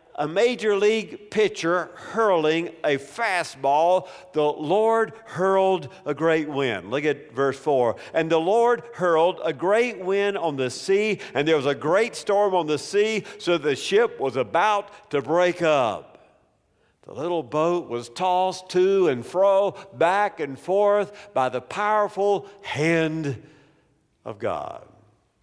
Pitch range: 150-220 Hz